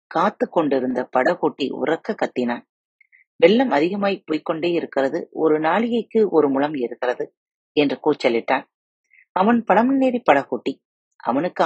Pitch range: 135-225 Hz